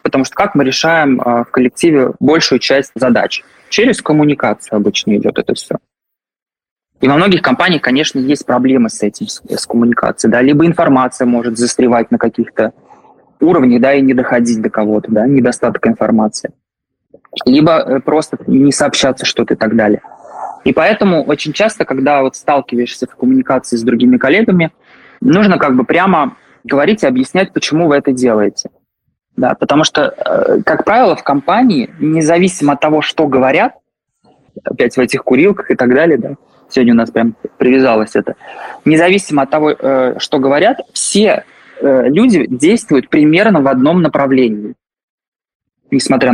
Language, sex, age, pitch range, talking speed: Russian, male, 20-39, 120-160 Hz, 150 wpm